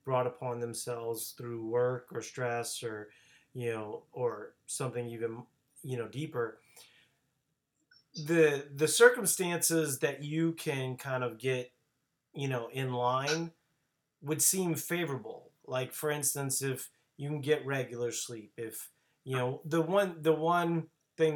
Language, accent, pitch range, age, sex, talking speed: English, American, 130-165 Hz, 30-49, male, 140 wpm